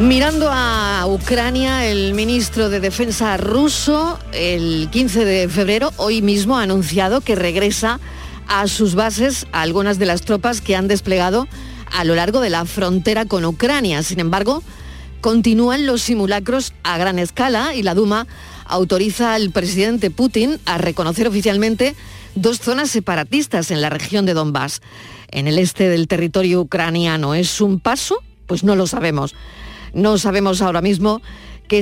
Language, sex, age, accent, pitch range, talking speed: Spanish, female, 40-59, Spanish, 175-225 Hz, 155 wpm